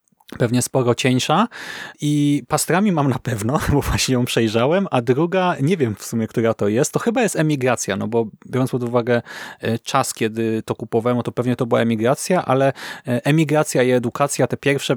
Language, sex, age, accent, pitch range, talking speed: Polish, male, 30-49, native, 120-150 Hz, 180 wpm